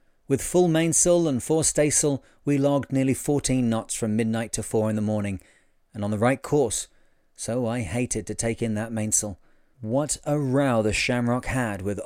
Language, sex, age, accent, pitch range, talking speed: English, male, 40-59, British, 110-130 Hz, 190 wpm